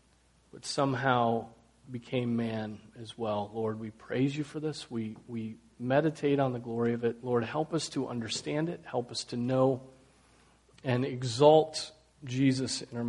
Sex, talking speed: male, 160 wpm